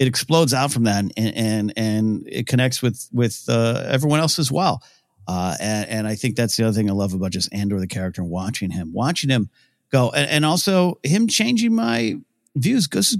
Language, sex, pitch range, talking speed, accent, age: English, male, 110-145 Hz, 220 wpm, American, 40-59